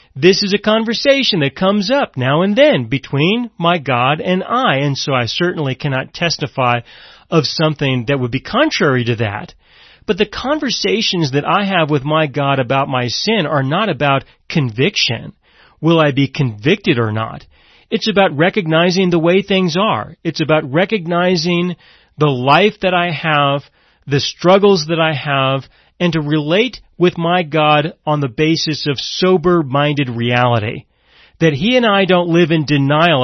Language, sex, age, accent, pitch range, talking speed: English, male, 40-59, American, 140-190 Hz, 165 wpm